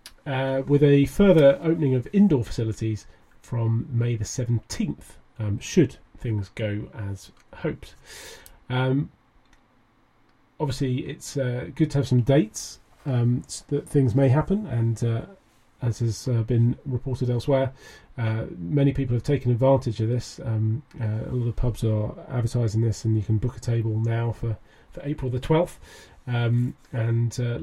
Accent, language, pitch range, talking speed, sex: British, English, 115-135 Hz, 155 wpm, male